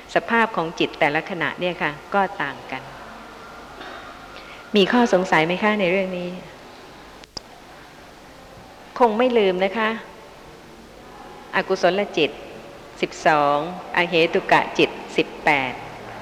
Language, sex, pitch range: Thai, female, 170-215 Hz